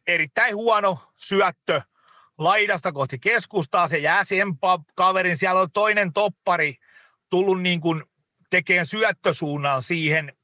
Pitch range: 145-195 Hz